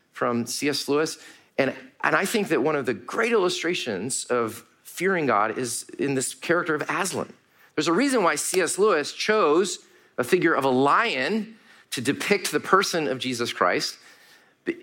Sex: male